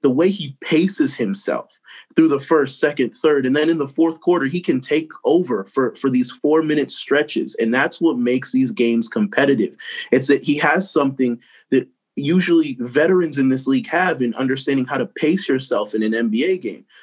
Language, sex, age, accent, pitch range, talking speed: English, male, 30-49, American, 120-155 Hz, 190 wpm